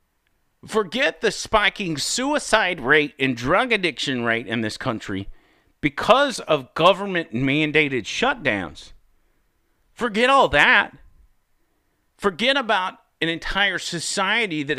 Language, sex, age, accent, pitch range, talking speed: English, male, 40-59, American, 130-190 Hz, 105 wpm